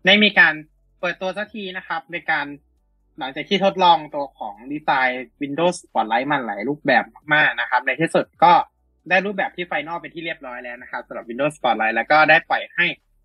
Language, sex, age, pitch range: Thai, male, 20-39, 130-180 Hz